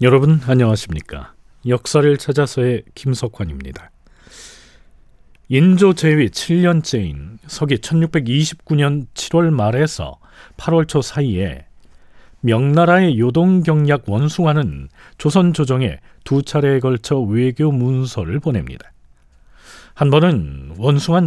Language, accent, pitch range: Korean, native, 110-155 Hz